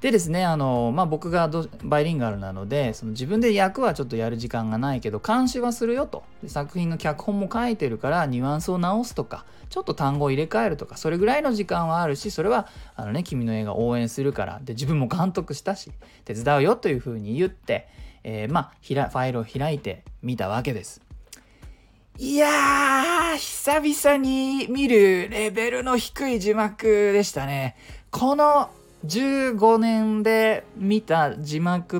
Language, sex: Japanese, male